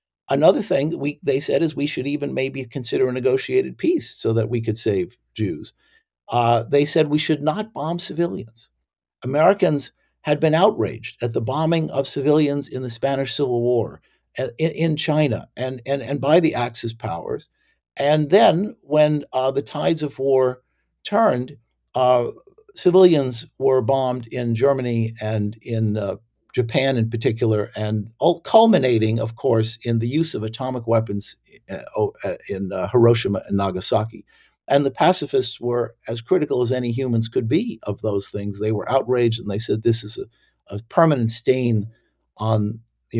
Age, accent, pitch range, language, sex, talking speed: 50-69, American, 115-150 Hz, English, male, 160 wpm